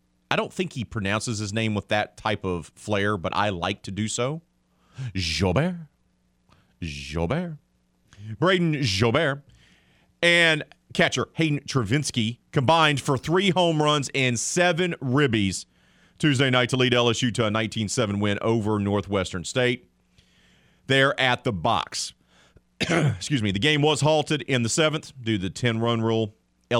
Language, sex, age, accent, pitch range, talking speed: English, male, 40-59, American, 90-135 Hz, 145 wpm